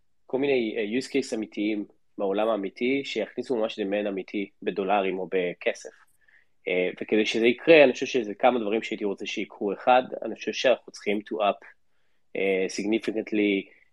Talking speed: 140 wpm